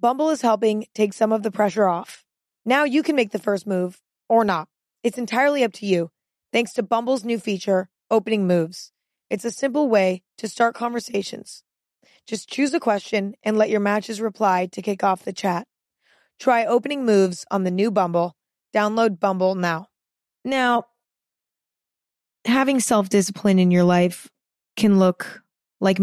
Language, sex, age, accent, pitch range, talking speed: English, female, 20-39, American, 185-235 Hz, 165 wpm